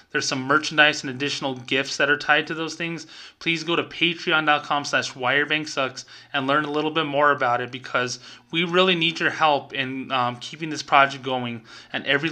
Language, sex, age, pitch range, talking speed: English, male, 20-39, 125-150 Hz, 195 wpm